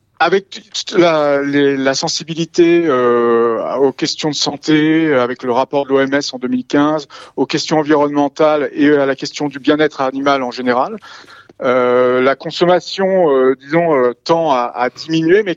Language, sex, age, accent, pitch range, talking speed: French, male, 40-59, French, 135-170 Hz, 160 wpm